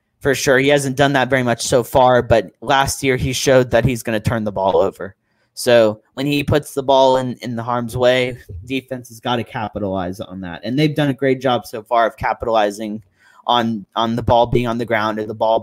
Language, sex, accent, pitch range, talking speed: English, male, American, 110-130 Hz, 240 wpm